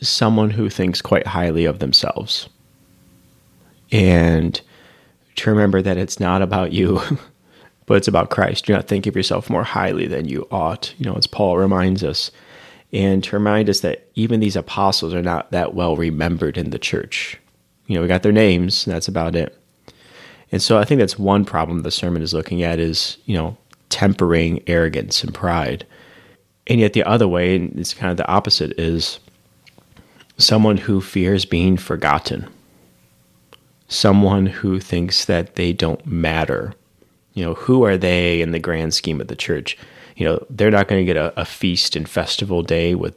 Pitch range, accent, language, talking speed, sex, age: 85-100 Hz, American, English, 180 wpm, male, 30-49